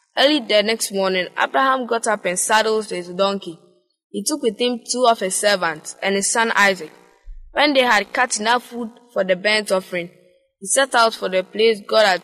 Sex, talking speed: female, 200 wpm